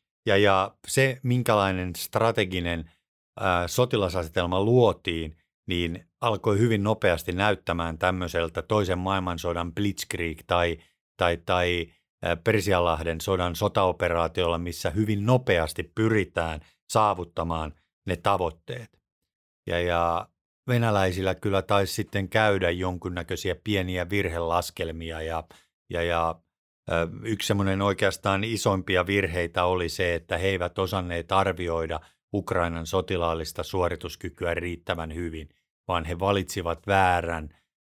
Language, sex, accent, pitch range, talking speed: Finnish, male, native, 85-100 Hz, 100 wpm